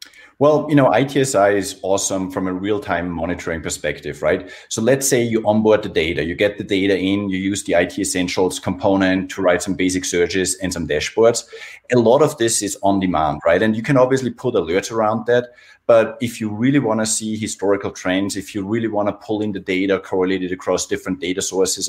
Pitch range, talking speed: 95-110 Hz, 210 wpm